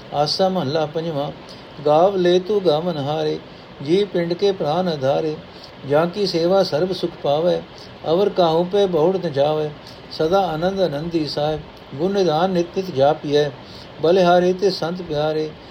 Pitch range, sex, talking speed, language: 150-185 Hz, male, 140 wpm, Punjabi